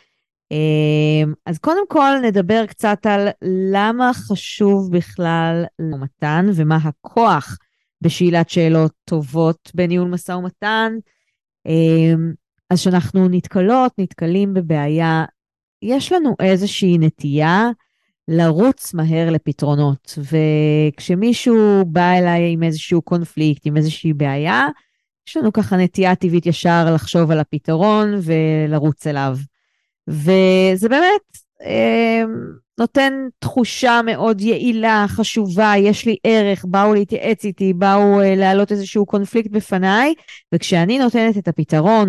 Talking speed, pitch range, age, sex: 105 wpm, 160-210 Hz, 20-39, female